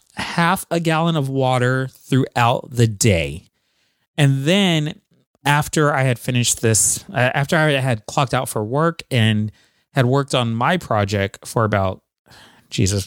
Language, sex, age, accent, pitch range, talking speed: English, male, 30-49, American, 115-155 Hz, 140 wpm